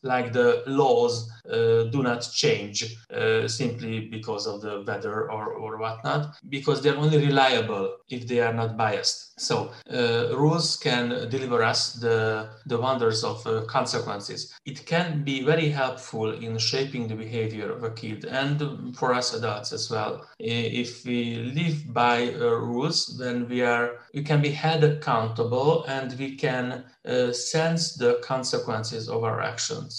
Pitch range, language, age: 115-150 Hz, English, 30-49